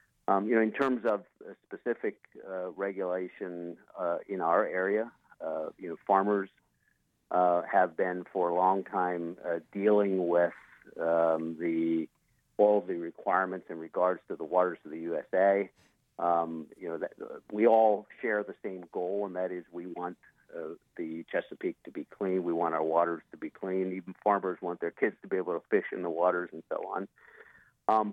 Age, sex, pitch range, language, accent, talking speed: 50-69, male, 85-100 Hz, English, American, 180 wpm